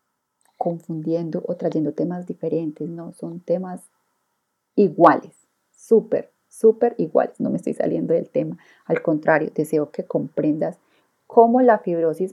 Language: Spanish